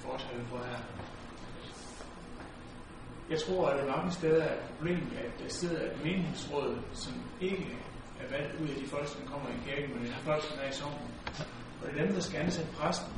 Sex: male